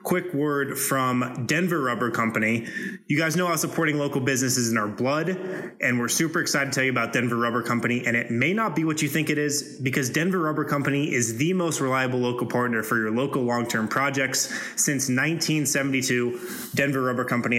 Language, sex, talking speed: English, male, 195 wpm